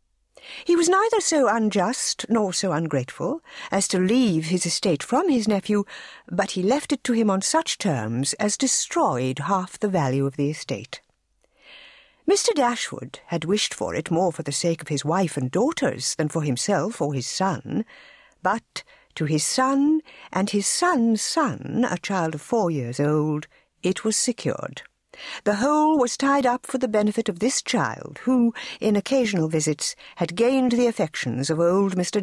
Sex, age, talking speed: female, 60-79, 175 wpm